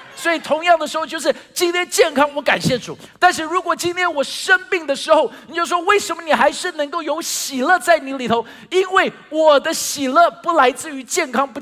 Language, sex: Chinese, male